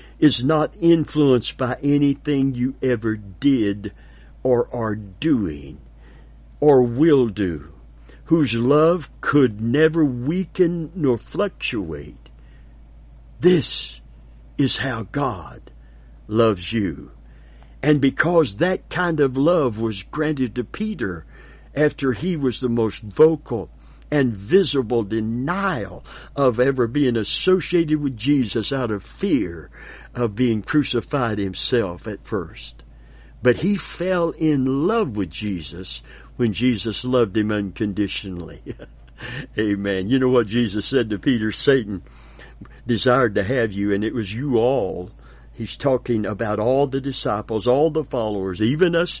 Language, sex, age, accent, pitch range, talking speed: English, male, 60-79, American, 100-140 Hz, 125 wpm